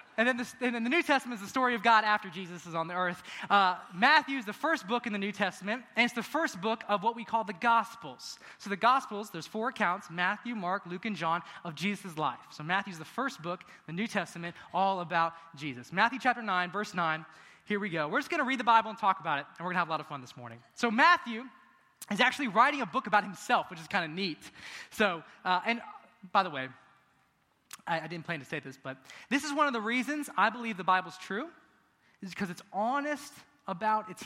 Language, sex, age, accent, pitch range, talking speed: English, male, 20-39, American, 180-245 Hz, 245 wpm